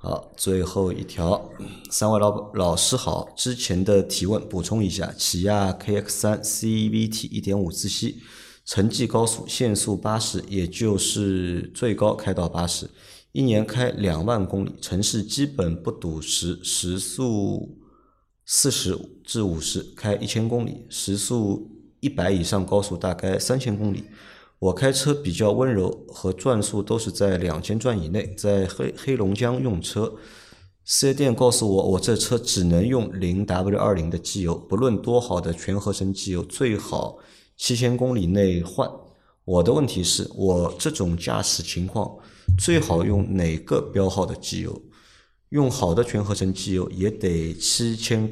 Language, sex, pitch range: Chinese, male, 90-110 Hz